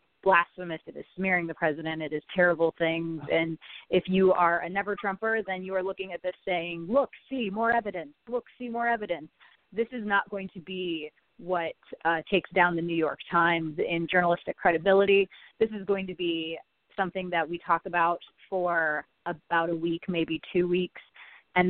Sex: female